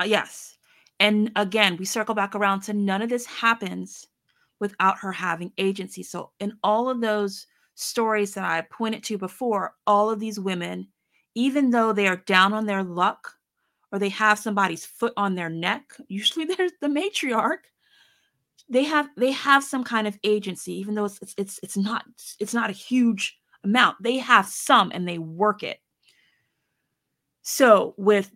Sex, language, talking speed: female, English, 165 wpm